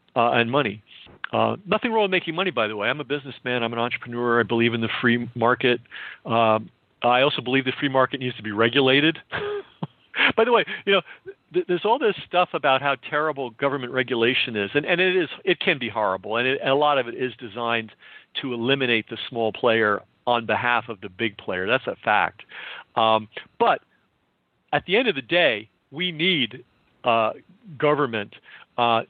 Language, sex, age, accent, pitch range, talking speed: English, male, 50-69, American, 115-150 Hz, 195 wpm